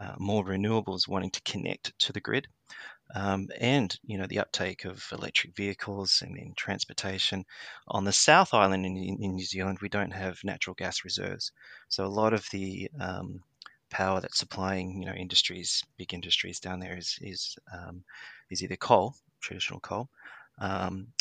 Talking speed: 170 wpm